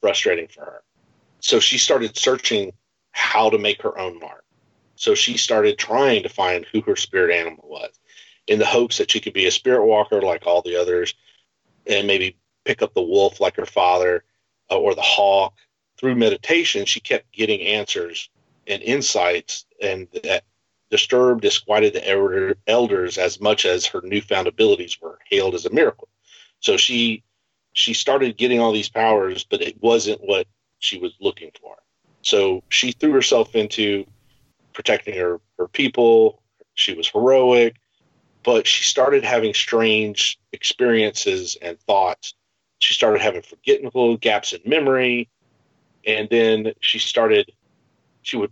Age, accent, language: 40-59, American, English